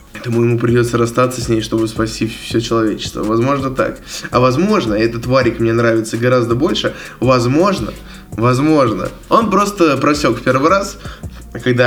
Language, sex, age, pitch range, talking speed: Russian, male, 20-39, 120-165 Hz, 145 wpm